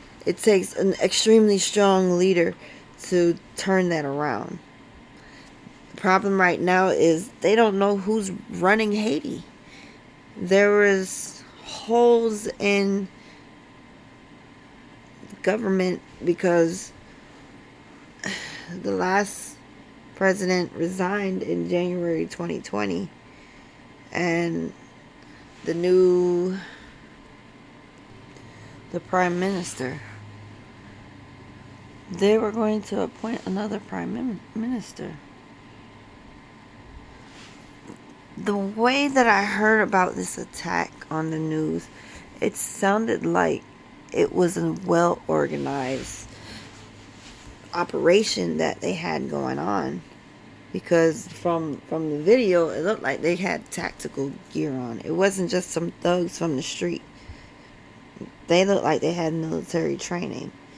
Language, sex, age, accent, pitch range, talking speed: English, female, 20-39, American, 145-200 Hz, 100 wpm